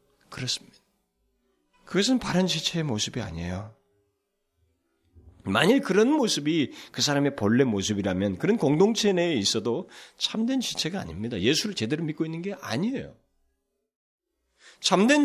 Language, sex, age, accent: Korean, male, 40-59, native